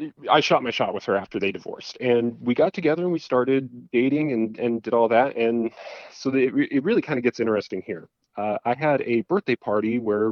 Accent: American